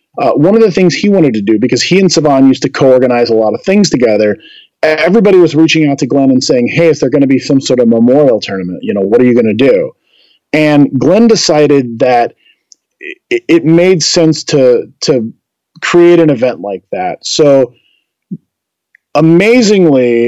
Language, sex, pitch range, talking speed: English, male, 130-180 Hz, 190 wpm